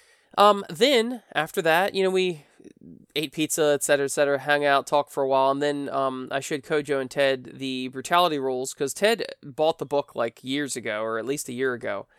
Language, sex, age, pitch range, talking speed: English, male, 20-39, 135-175 Hz, 215 wpm